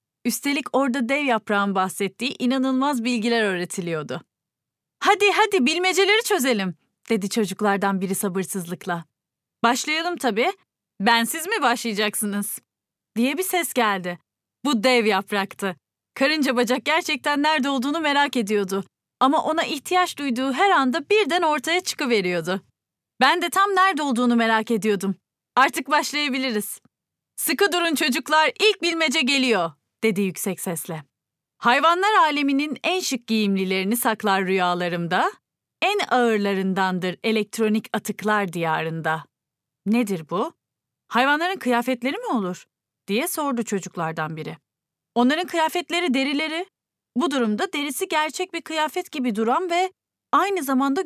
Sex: female